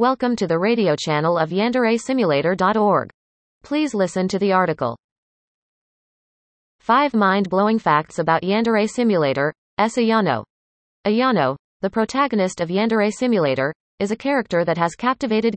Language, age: English, 30-49